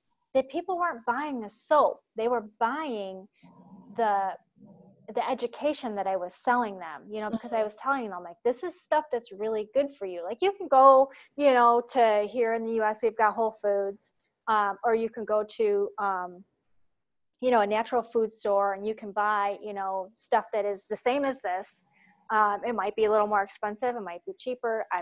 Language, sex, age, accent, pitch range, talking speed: English, female, 30-49, American, 205-255 Hz, 210 wpm